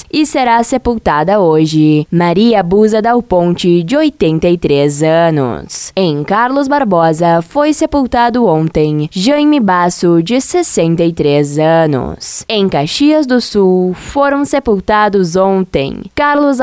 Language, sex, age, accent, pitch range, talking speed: Portuguese, female, 10-29, Brazilian, 165-240 Hz, 110 wpm